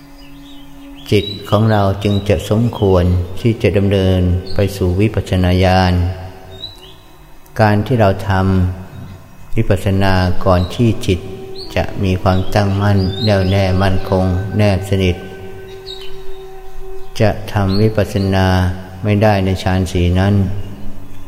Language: Thai